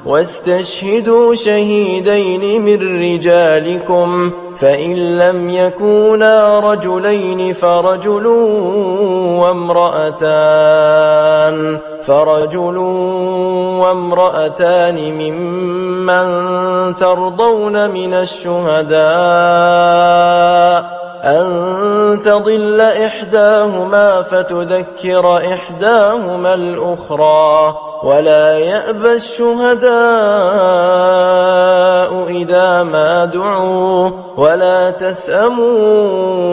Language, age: English, 20-39